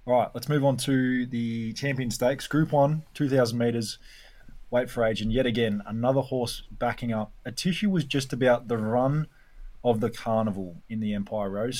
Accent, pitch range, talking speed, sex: Australian, 105-125 Hz, 195 wpm, male